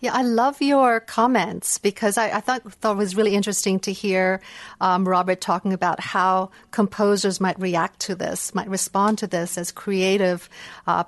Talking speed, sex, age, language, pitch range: 180 wpm, female, 50-69, English, 185-220 Hz